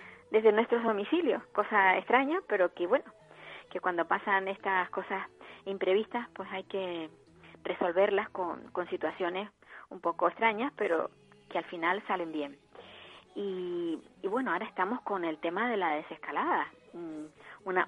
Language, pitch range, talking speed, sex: Spanish, 165-200 Hz, 140 wpm, female